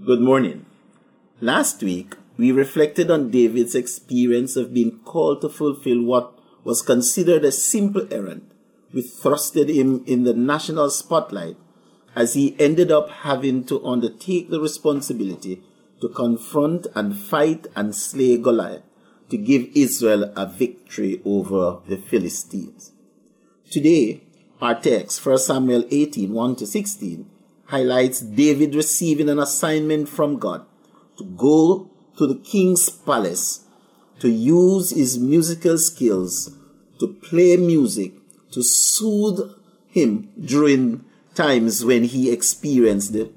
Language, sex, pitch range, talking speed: English, male, 120-165 Hz, 125 wpm